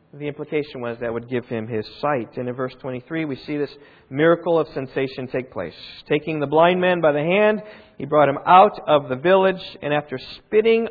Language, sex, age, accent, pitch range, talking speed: English, male, 40-59, American, 130-180 Hz, 210 wpm